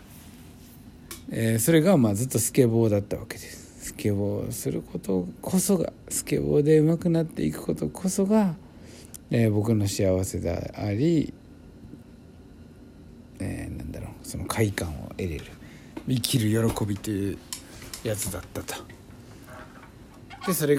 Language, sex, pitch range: Japanese, male, 95-140 Hz